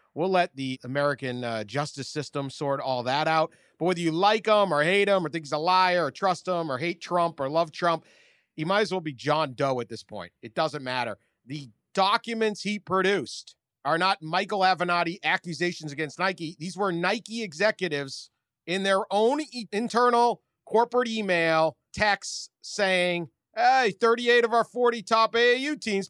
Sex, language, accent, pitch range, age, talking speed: male, English, American, 160-225 Hz, 40-59, 175 wpm